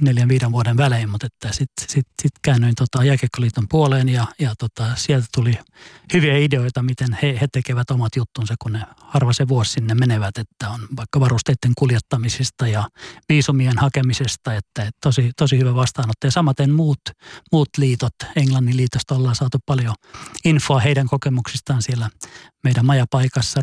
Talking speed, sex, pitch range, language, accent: 150 wpm, male, 120-140 Hz, Finnish, native